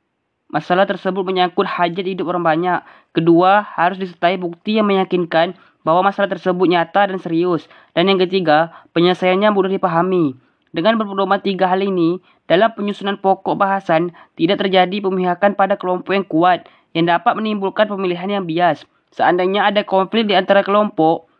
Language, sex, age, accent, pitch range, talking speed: Indonesian, female, 20-39, native, 175-200 Hz, 150 wpm